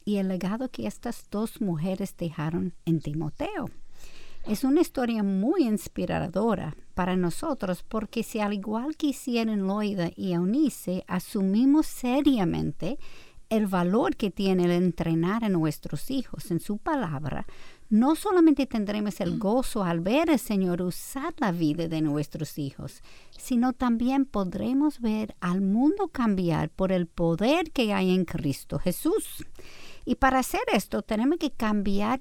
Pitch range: 175-245 Hz